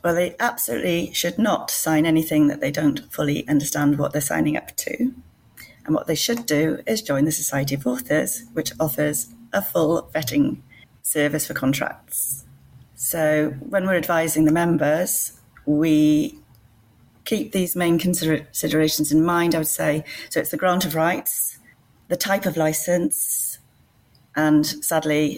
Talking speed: 150 wpm